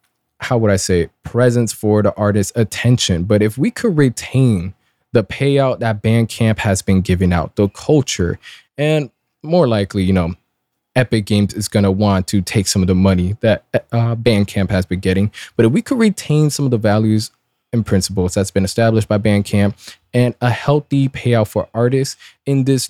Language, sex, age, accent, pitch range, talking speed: English, male, 20-39, American, 100-130 Hz, 185 wpm